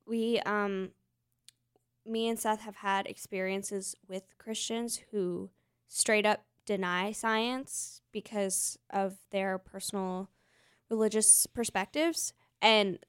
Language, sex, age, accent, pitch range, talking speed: English, female, 10-29, American, 190-225 Hz, 100 wpm